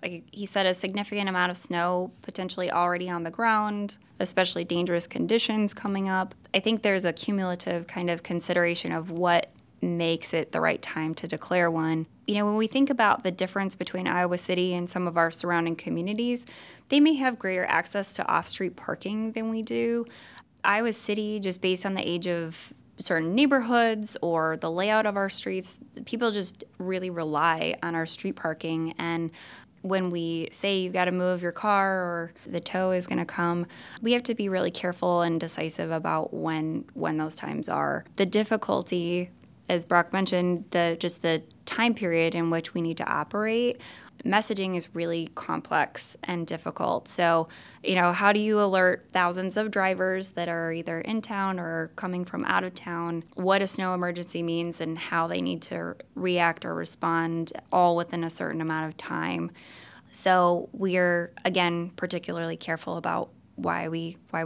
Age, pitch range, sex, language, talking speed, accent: 20-39, 165-195 Hz, female, English, 175 wpm, American